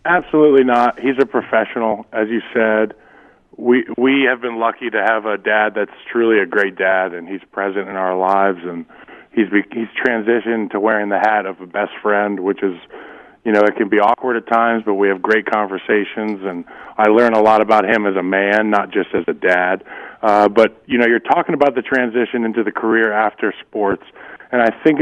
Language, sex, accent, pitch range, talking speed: English, male, American, 105-125 Hz, 210 wpm